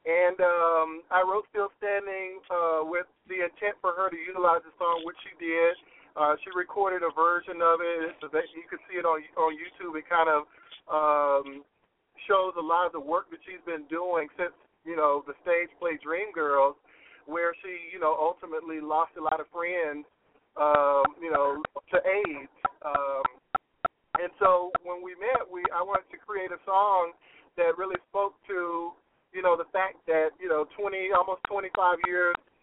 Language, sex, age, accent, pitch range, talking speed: English, male, 40-59, American, 160-200 Hz, 185 wpm